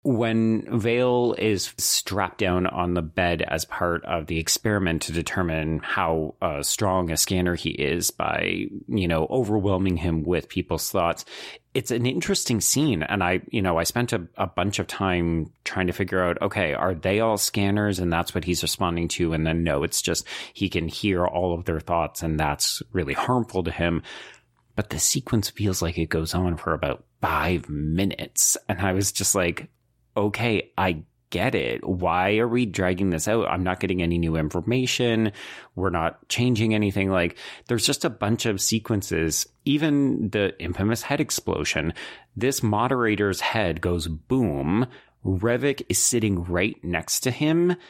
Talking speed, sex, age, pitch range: 175 wpm, male, 30-49, 85-110 Hz